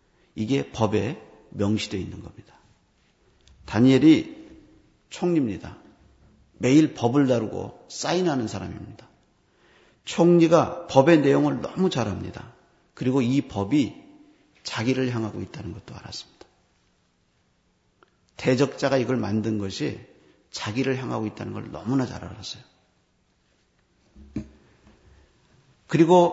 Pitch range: 105-145 Hz